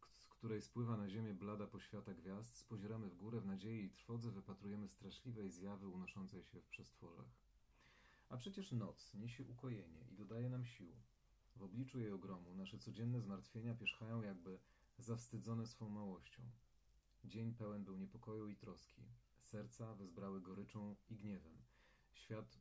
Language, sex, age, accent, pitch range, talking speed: Polish, male, 40-59, native, 95-115 Hz, 145 wpm